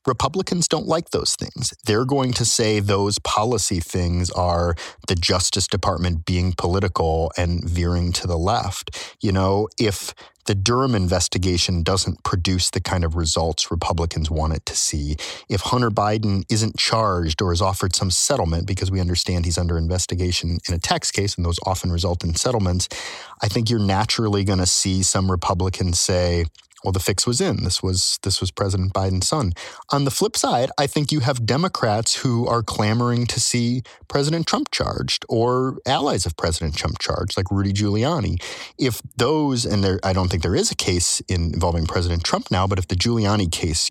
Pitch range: 90-110 Hz